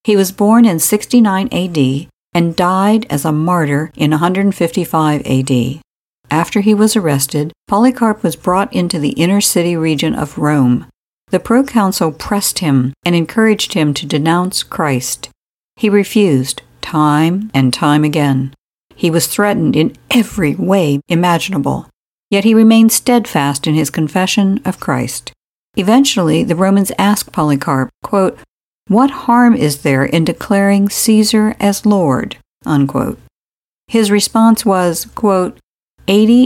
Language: English